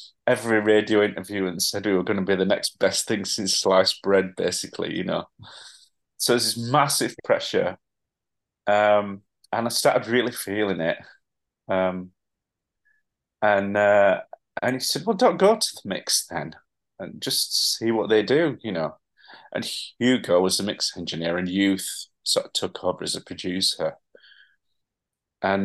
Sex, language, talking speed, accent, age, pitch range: male, English, 160 wpm, British, 30-49, 95-115 Hz